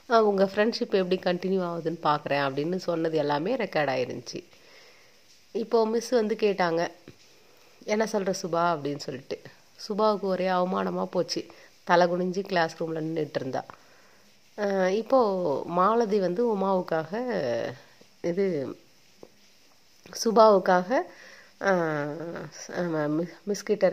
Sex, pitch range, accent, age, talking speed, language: female, 165-200 Hz, native, 30-49, 95 wpm, Tamil